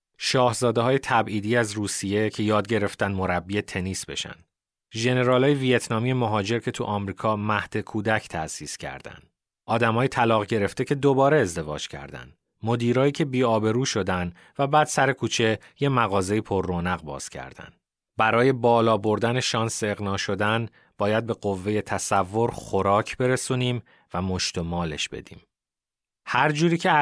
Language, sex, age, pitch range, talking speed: Persian, male, 30-49, 100-120 Hz, 135 wpm